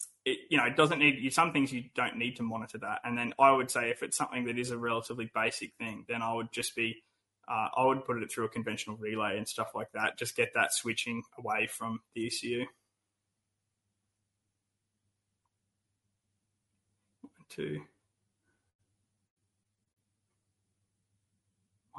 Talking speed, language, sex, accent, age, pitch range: 155 wpm, English, male, Australian, 20-39, 100-135 Hz